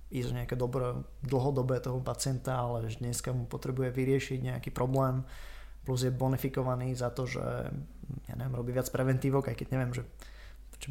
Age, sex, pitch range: 20-39, male, 125-140 Hz